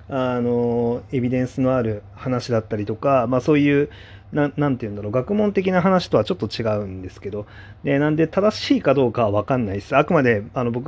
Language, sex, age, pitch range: Japanese, male, 30-49, 100-145 Hz